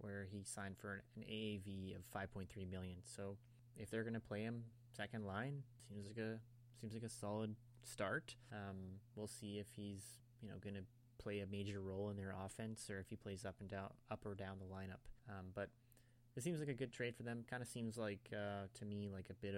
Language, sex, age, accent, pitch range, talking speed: English, male, 20-39, American, 100-120 Hz, 225 wpm